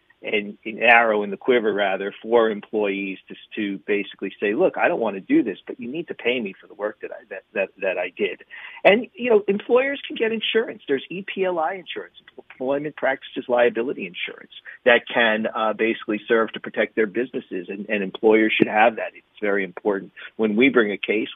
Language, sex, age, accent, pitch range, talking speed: English, male, 40-59, American, 105-140 Hz, 205 wpm